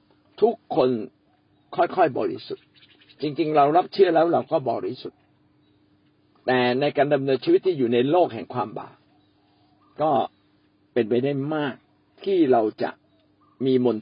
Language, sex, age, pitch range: Thai, male, 60-79, 110-160 Hz